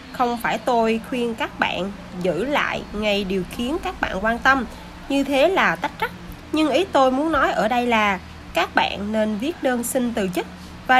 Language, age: Vietnamese, 20-39